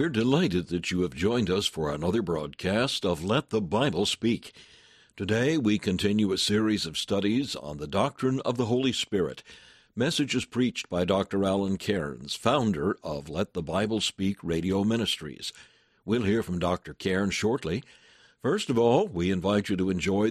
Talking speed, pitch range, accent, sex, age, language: 170 wpm, 85-105 Hz, American, male, 60-79, English